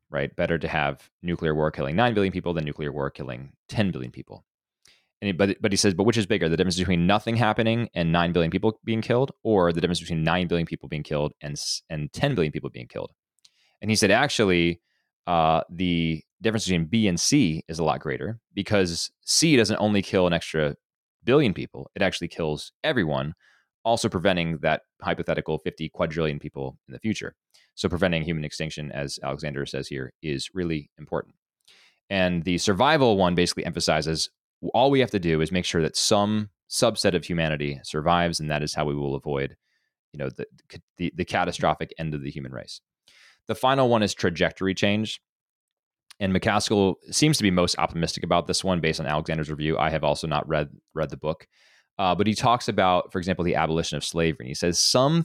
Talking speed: 200 wpm